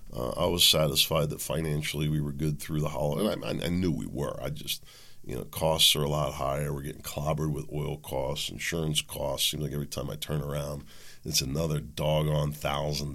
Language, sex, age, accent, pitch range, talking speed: English, male, 50-69, American, 75-85 Hz, 215 wpm